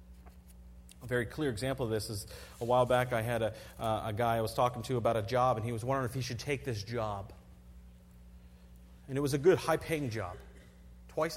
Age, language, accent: 30-49, English, American